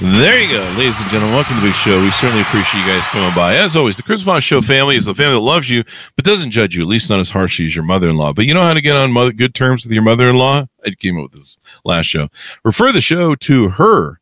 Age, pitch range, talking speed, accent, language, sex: 50-69, 90-135 Hz, 275 wpm, American, English, male